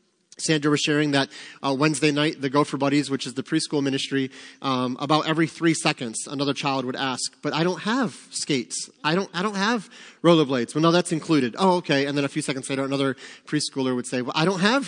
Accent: American